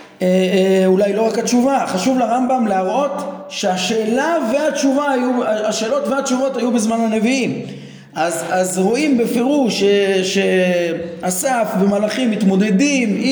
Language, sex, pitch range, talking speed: Hebrew, male, 185-235 Hz, 115 wpm